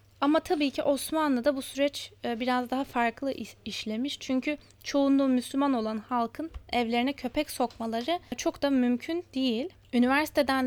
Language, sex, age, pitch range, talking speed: German, female, 10-29, 240-295 Hz, 135 wpm